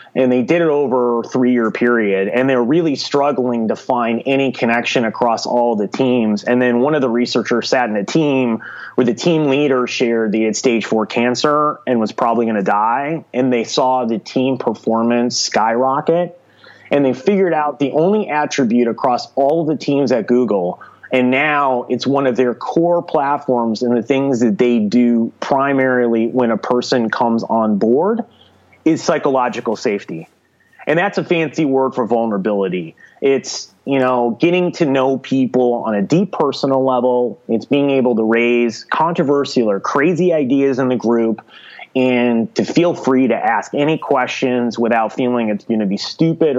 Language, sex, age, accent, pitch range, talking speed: English, male, 30-49, American, 120-145 Hz, 175 wpm